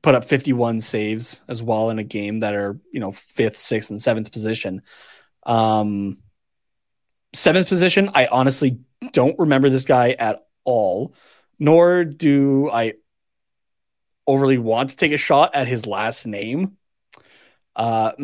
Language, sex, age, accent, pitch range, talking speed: English, male, 30-49, American, 110-140 Hz, 140 wpm